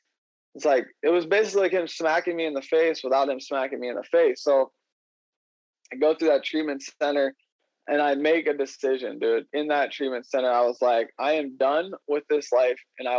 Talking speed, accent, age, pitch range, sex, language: 215 wpm, American, 20-39, 135-175 Hz, male, English